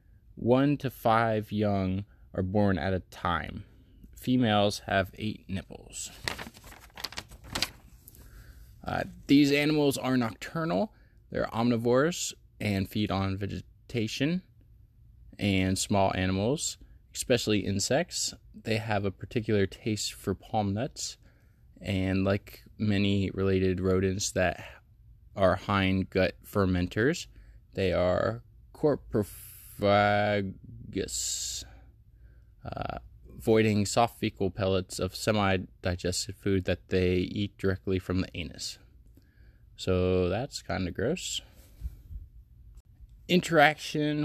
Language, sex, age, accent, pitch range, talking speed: English, male, 20-39, American, 95-115 Hz, 100 wpm